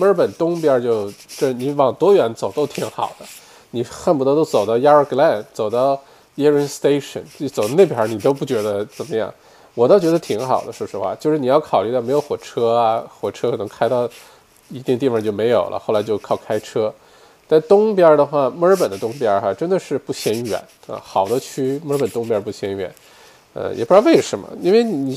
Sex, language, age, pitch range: male, Chinese, 20-39, 125-165 Hz